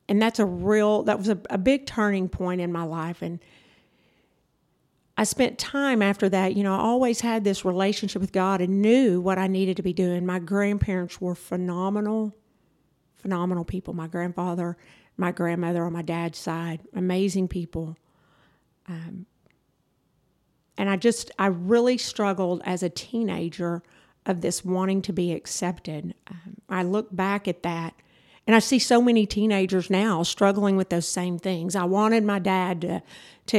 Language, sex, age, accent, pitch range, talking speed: English, female, 50-69, American, 175-205 Hz, 165 wpm